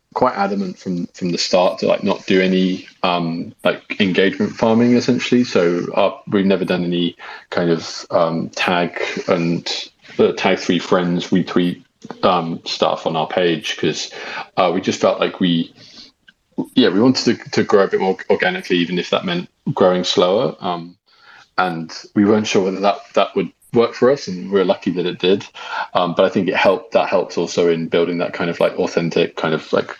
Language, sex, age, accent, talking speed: English, male, 20-39, British, 195 wpm